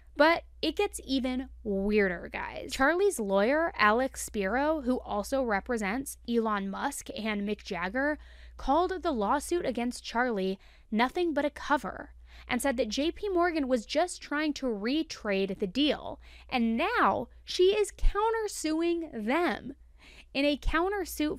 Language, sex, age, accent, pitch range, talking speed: English, female, 20-39, American, 220-300 Hz, 135 wpm